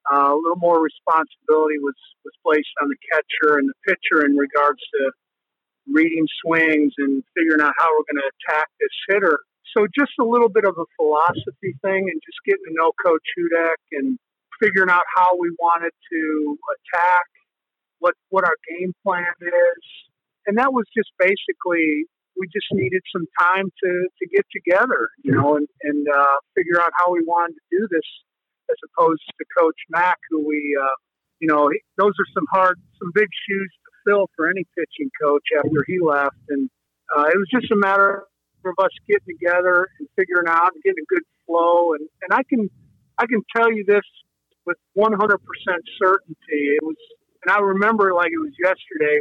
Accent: American